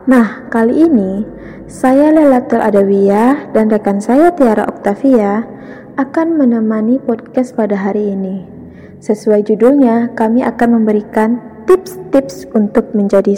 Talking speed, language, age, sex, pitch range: 110 wpm, Malay, 20-39, female, 205-255 Hz